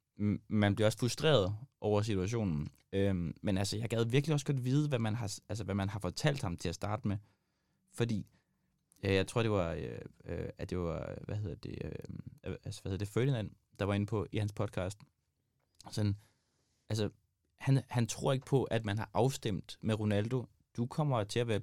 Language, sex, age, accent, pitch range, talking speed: Danish, male, 20-39, native, 95-130 Hz, 165 wpm